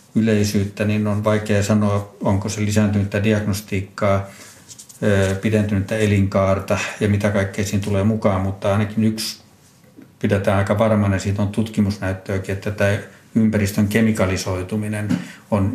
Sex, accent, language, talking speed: male, native, Finnish, 110 wpm